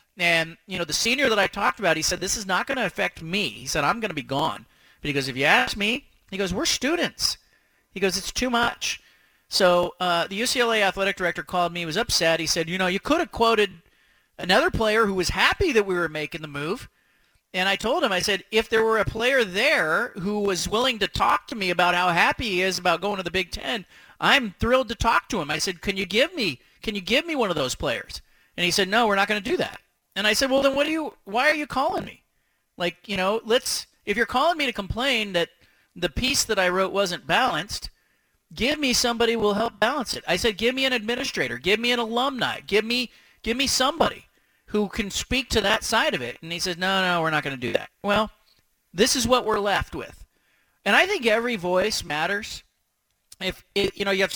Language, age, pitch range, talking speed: English, 40-59, 180-235 Hz, 245 wpm